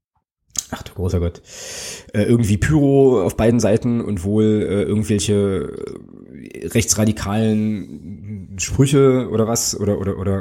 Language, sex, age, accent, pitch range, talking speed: German, male, 20-39, German, 95-115 Hz, 120 wpm